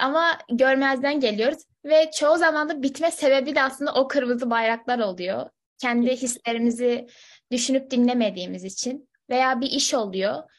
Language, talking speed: Turkish, 135 wpm